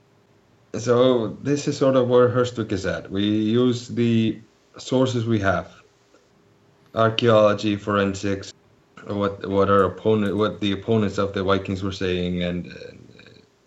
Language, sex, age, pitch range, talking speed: English, male, 30-49, 90-110 Hz, 135 wpm